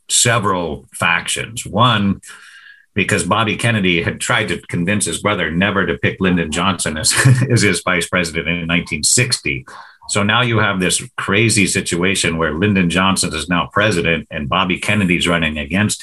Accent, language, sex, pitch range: American, Polish, male, 85-105 Hz